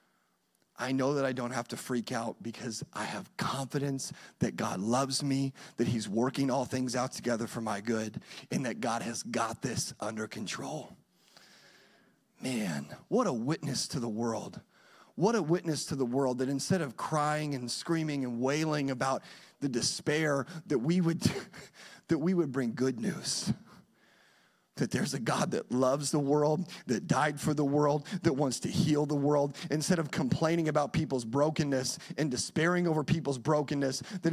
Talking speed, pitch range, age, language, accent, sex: 175 wpm, 130-170 Hz, 30-49, English, American, male